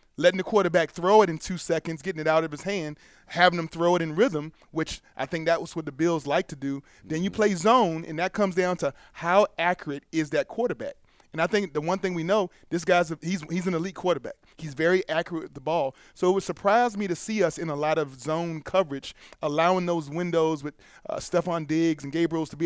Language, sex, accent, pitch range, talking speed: English, male, American, 155-190 Hz, 245 wpm